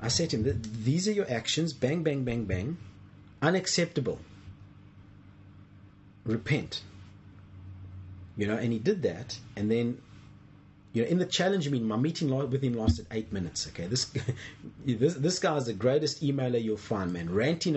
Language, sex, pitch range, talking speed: English, male, 100-145 Hz, 160 wpm